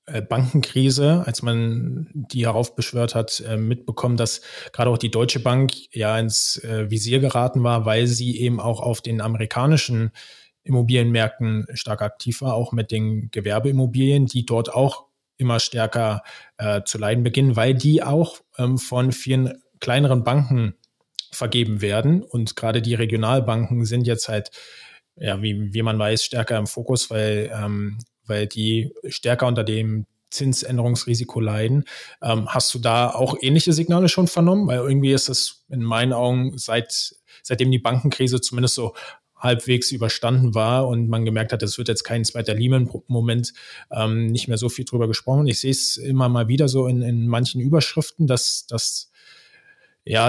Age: 20-39